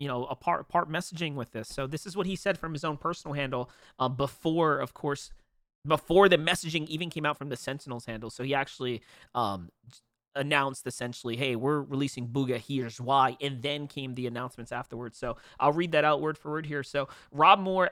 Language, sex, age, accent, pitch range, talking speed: English, male, 30-49, American, 135-175 Hz, 210 wpm